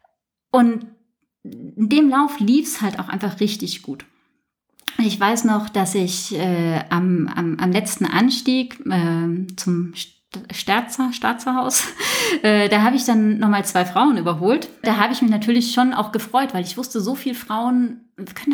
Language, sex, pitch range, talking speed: German, female, 195-255 Hz, 160 wpm